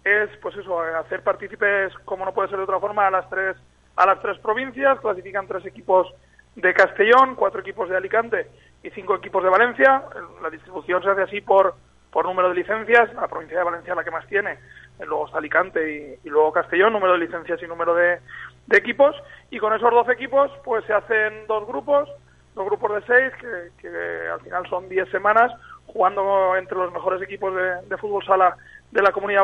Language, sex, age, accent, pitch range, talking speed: Spanish, male, 30-49, Spanish, 185-220 Hz, 205 wpm